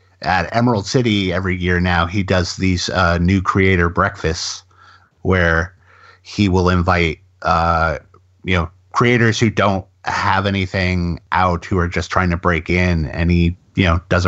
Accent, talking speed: American, 160 wpm